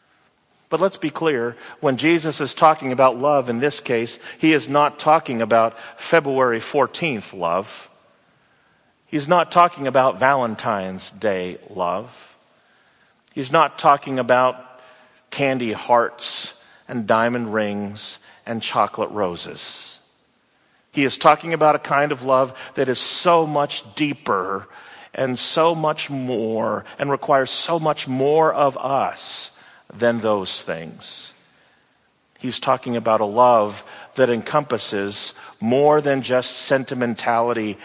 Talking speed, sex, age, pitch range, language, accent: 125 wpm, male, 40-59, 115-150 Hz, English, American